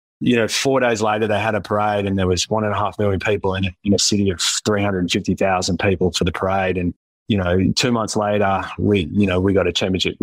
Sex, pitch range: male, 100-125 Hz